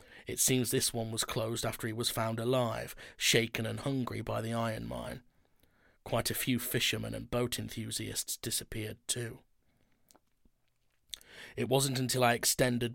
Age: 30-49